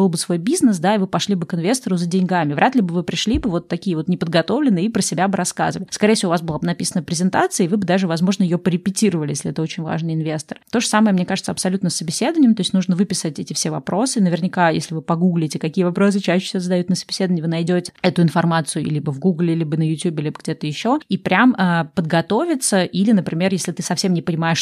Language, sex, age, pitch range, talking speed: Russian, female, 20-39, 170-205 Hz, 235 wpm